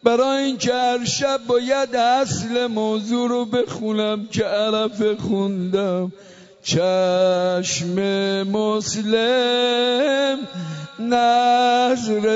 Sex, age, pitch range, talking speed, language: male, 50-69, 220-275 Hz, 80 wpm, Persian